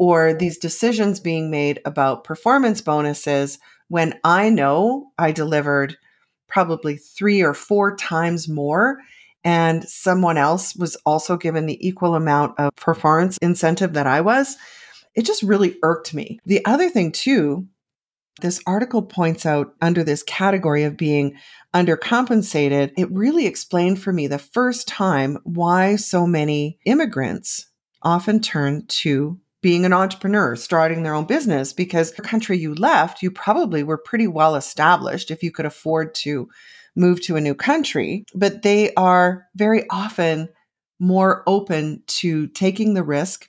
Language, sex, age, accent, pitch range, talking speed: English, female, 40-59, American, 155-200 Hz, 150 wpm